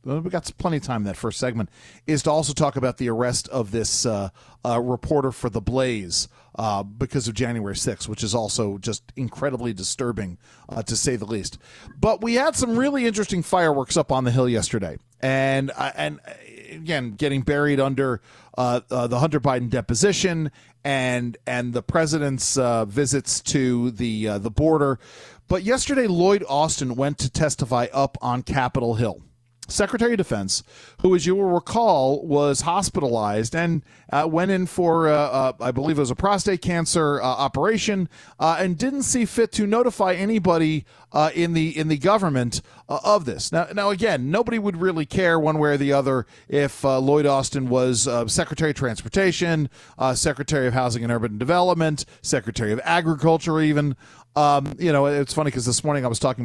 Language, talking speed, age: English, 185 wpm, 40-59